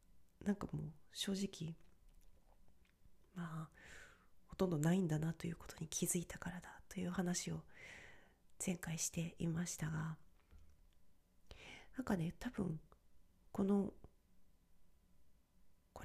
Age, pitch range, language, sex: 40-59, 150-180 Hz, Japanese, female